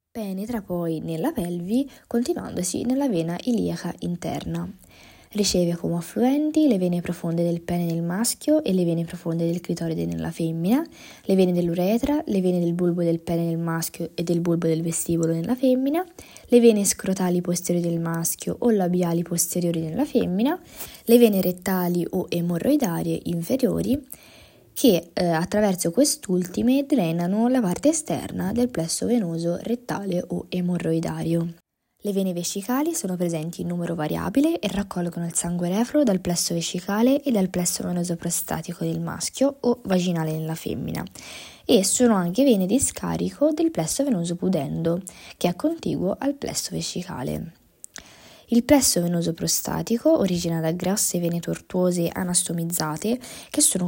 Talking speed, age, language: 145 wpm, 20-39, Italian